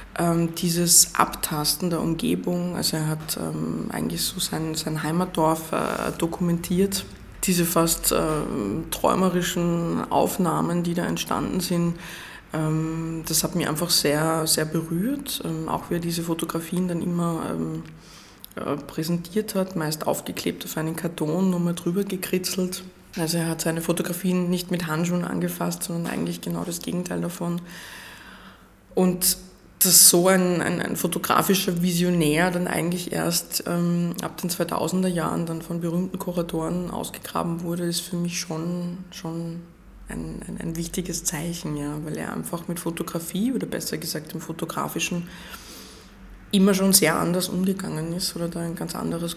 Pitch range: 160-180 Hz